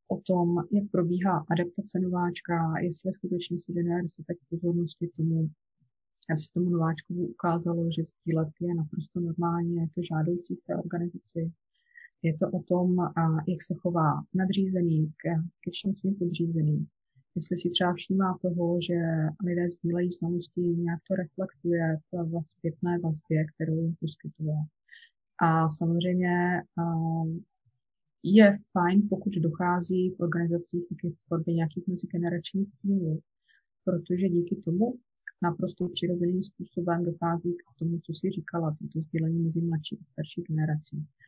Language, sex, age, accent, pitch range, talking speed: Czech, female, 20-39, native, 165-185 Hz, 135 wpm